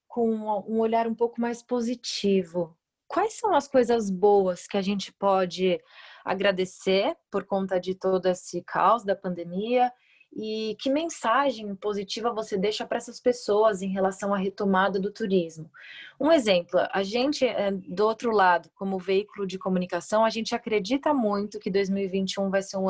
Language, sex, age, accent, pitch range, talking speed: Portuguese, female, 20-39, Brazilian, 185-220 Hz, 155 wpm